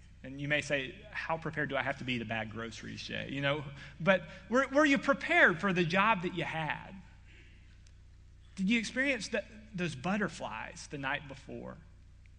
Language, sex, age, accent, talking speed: English, male, 30-49, American, 180 wpm